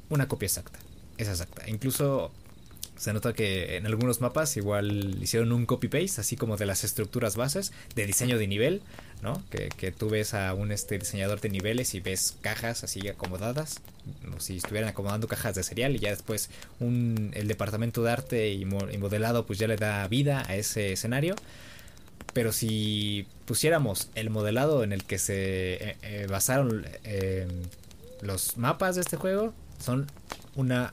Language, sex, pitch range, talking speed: Spanish, male, 100-125 Hz, 175 wpm